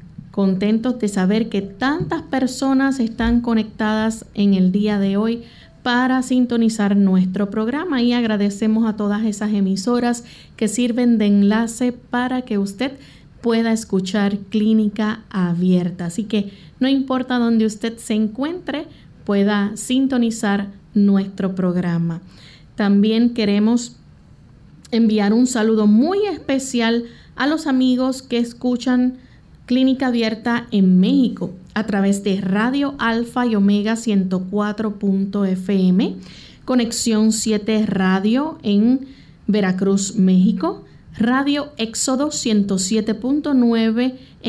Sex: female